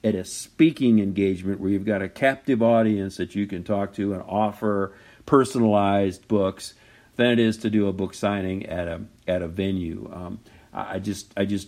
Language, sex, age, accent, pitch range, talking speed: English, male, 50-69, American, 95-115 Hz, 190 wpm